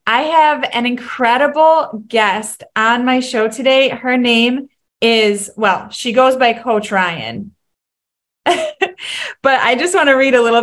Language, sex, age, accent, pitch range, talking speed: English, female, 20-39, American, 215-265 Hz, 145 wpm